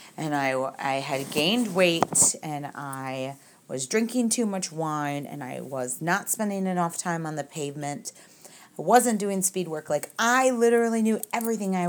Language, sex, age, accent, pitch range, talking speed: English, female, 30-49, American, 150-190 Hz, 170 wpm